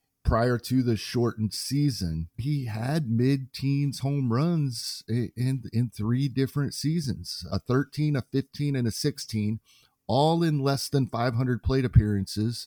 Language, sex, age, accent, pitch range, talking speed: English, male, 30-49, American, 110-140 Hz, 135 wpm